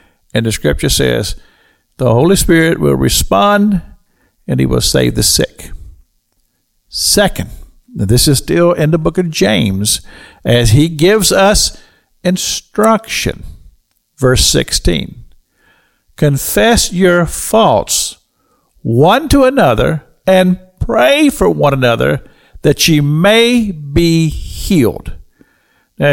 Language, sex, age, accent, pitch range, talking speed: English, male, 50-69, American, 110-185 Hz, 110 wpm